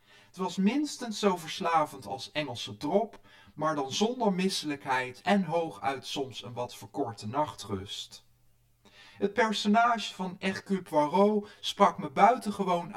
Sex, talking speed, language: male, 125 wpm, Dutch